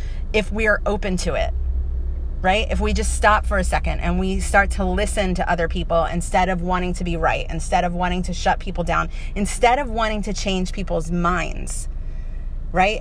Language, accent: English, American